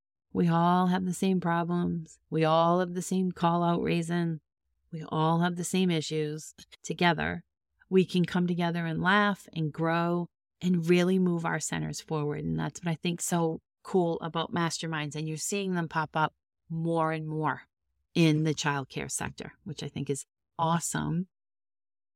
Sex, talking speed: female, 170 wpm